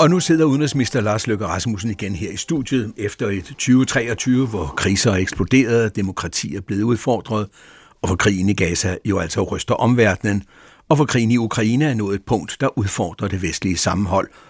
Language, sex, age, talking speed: Danish, male, 60-79, 185 wpm